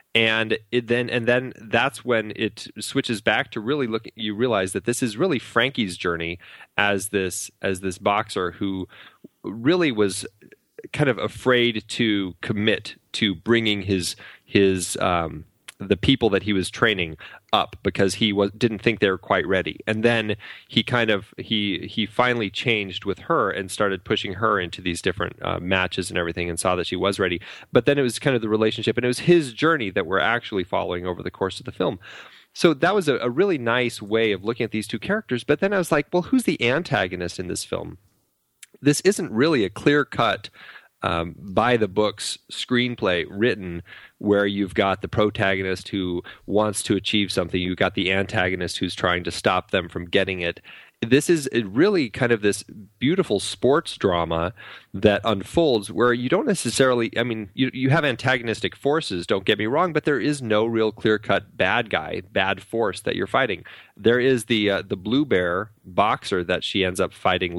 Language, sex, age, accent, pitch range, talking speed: English, male, 30-49, American, 95-120 Hz, 190 wpm